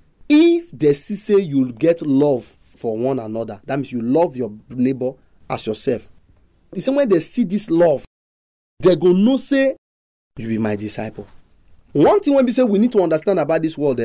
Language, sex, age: English, male, 30-49